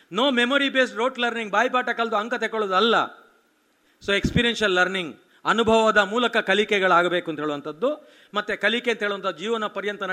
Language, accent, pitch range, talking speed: Kannada, native, 195-235 Hz, 155 wpm